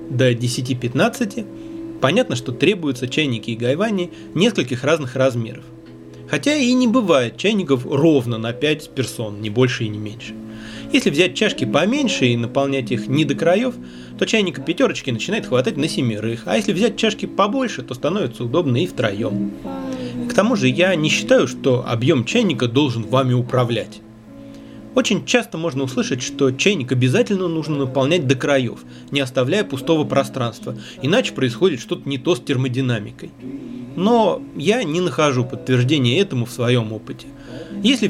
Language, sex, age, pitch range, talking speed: Russian, male, 30-49, 120-165 Hz, 150 wpm